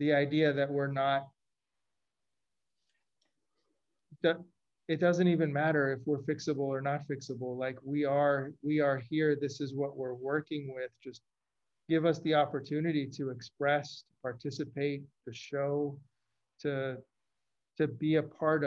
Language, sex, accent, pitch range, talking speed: English, male, American, 135-150 Hz, 140 wpm